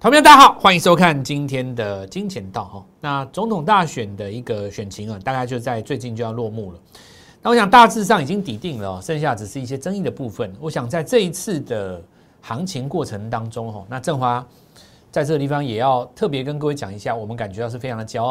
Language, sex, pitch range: Chinese, male, 115-185 Hz